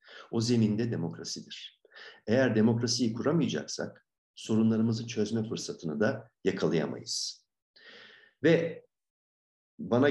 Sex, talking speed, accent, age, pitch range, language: male, 75 wpm, native, 50-69, 105-135 Hz, Turkish